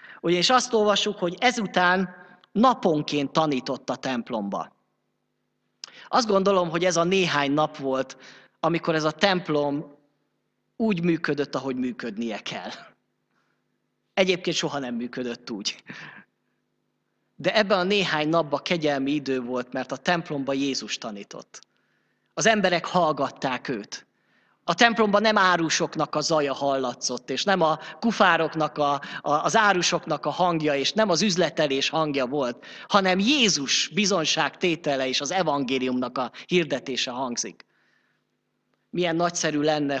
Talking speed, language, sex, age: 120 wpm, Hungarian, male, 30-49